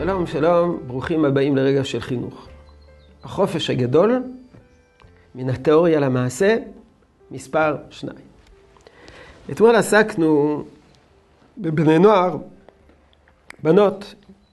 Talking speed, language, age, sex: 80 wpm, Hebrew, 50-69, male